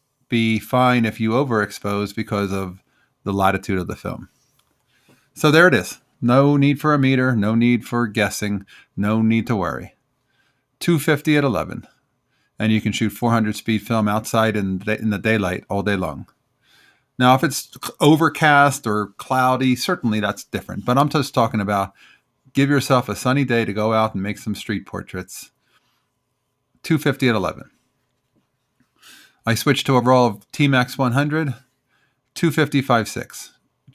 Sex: male